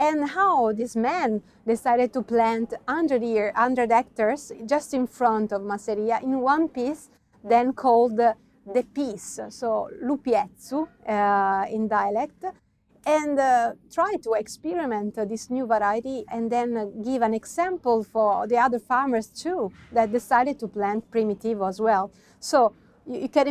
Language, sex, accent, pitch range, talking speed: English, female, Italian, 215-250 Hz, 150 wpm